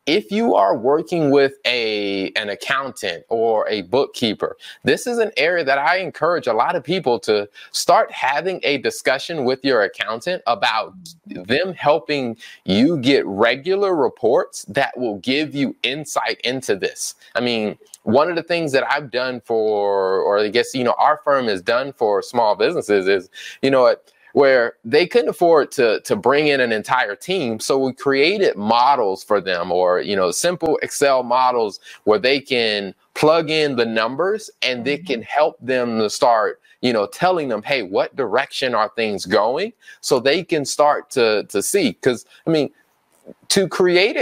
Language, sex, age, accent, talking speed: English, male, 20-39, American, 175 wpm